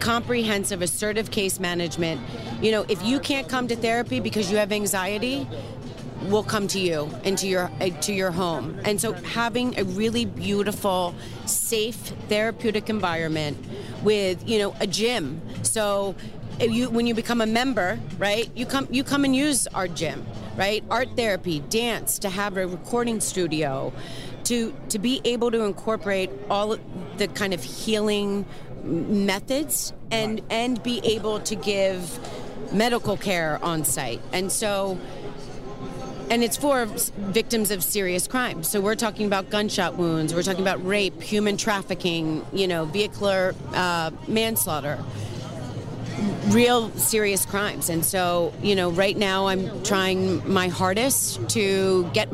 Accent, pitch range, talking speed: American, 175-220 Hz, 150 wpm